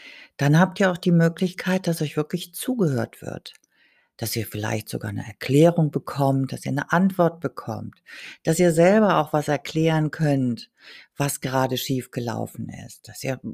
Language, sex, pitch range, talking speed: German, female, 115-175 Hz, 165 wpm